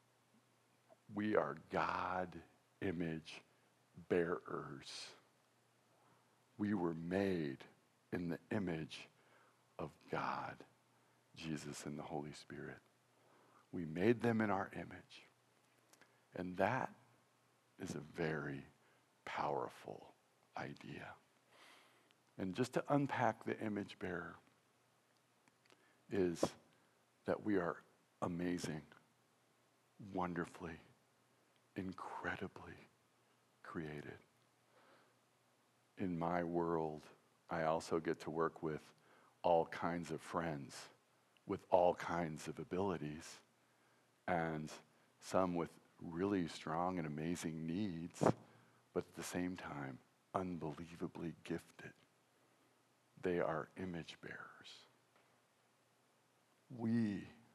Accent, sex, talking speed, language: American, male, 90 wpm, English